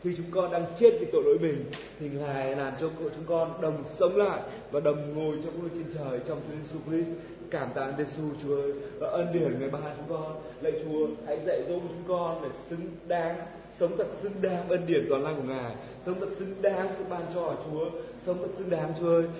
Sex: male